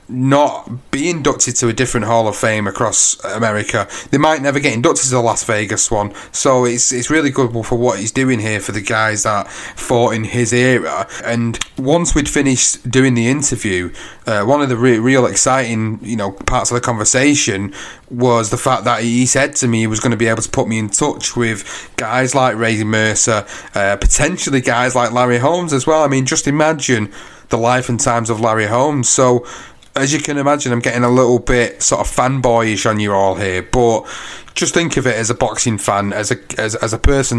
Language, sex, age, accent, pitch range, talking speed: English, male, 30-49, British, 110-130 Hz, 215 wpm